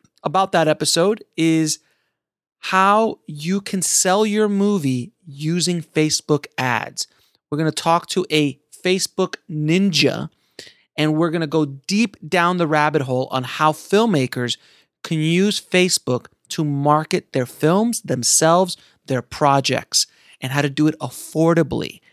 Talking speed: 135 wpm